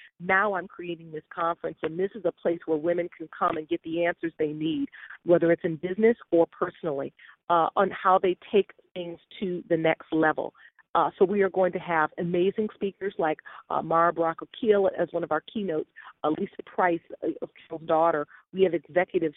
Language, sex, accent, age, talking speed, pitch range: English, female, American, 40-59, 190 wpm, 165-200 Hz